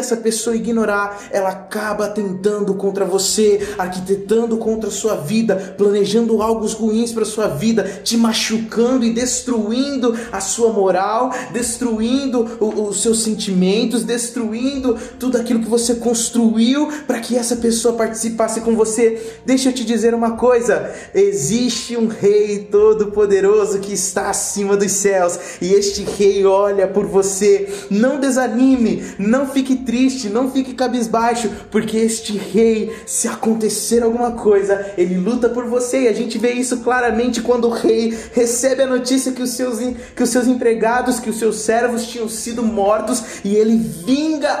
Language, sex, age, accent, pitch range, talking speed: Portuguese, male, 20-39, Brazilian, 205-240 Hz, 150 wpm